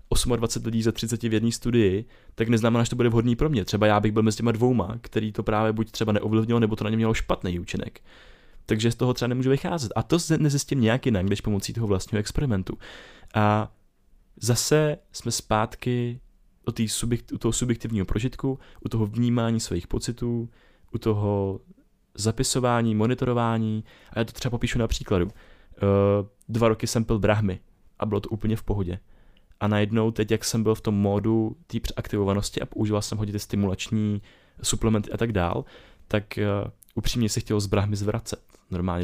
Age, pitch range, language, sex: 20-39, 100-115 Hz, Czech, male